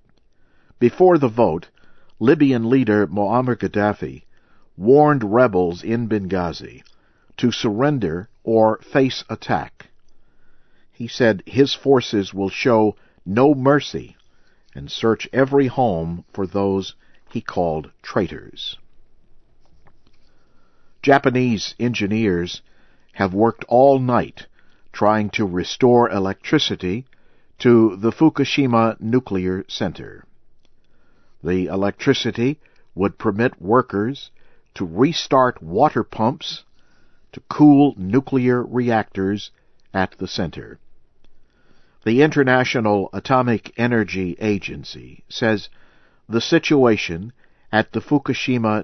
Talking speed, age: 90 wpm, 50-69